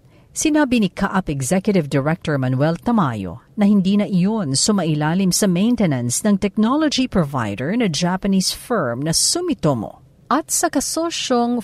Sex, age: female, 50-69